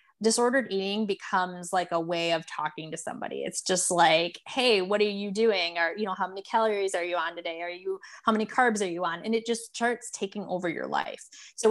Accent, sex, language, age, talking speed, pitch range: American, female, English, 20-39, 230 wpm, 185-230 Hz